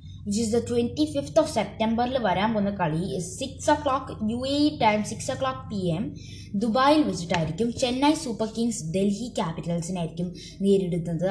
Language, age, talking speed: Malayalam, 20-39, 165 wpm